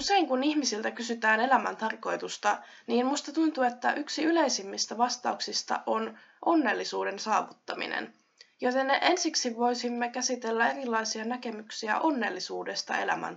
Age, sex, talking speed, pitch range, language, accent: 20-39, female, 110 wpm, 215-260 Hz, Finnish, native